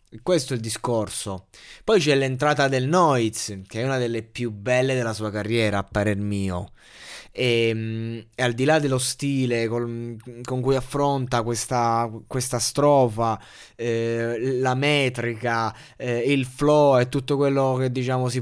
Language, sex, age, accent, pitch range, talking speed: Italian, male, 20-39, native, 115-140 Hz, 155 wpm